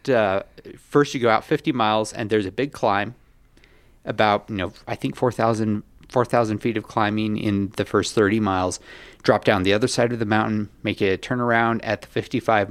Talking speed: 195 wpm